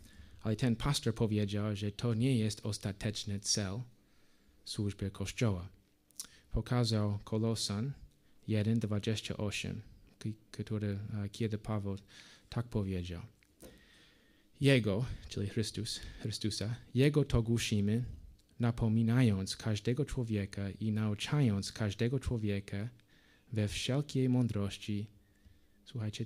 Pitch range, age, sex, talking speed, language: 100-115 Hz, 20-39, male, 85 wpm, Polish